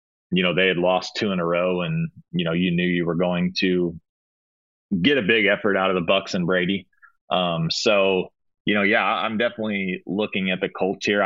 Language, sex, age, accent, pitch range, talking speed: English, male, 30-49, American, 90-105 Hz, 215 wpm